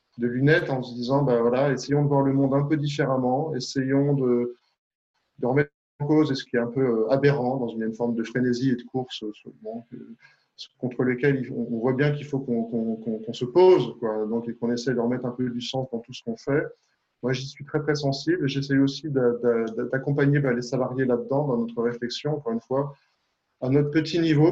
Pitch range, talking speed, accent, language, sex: 120-140 Hz, 230 wpm, French, French, male